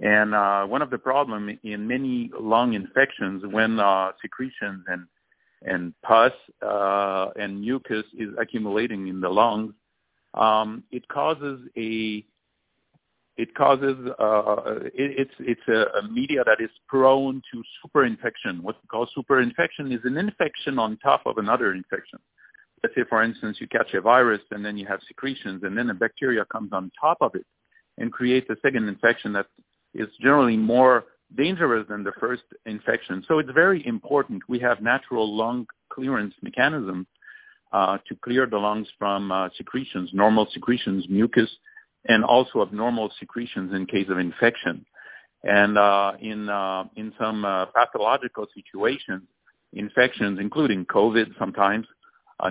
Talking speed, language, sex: 150 wpm, English, male